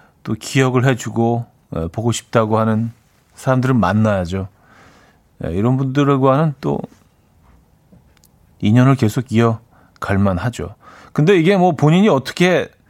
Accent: native